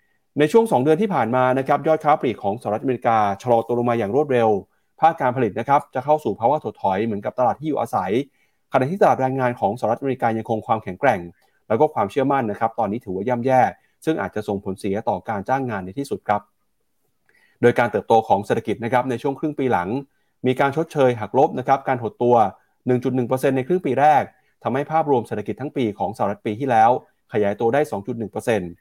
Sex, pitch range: male, 115-145 Hz